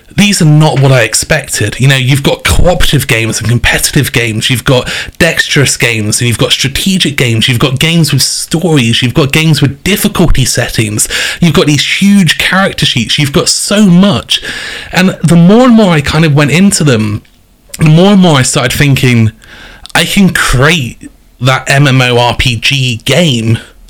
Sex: male